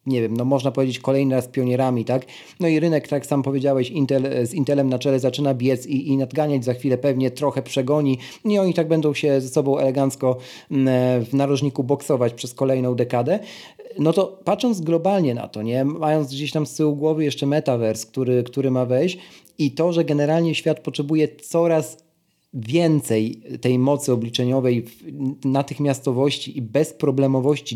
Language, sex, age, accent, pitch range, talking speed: Polish, male, 40-59, native, 130-165 Hz, 165 wpm